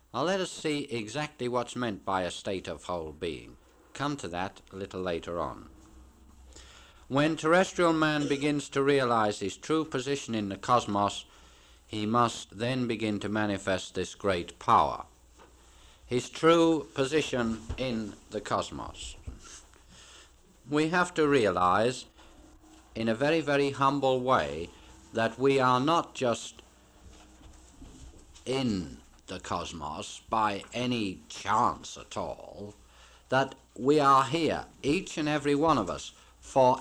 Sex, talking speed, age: male, 130 wpm, 60-79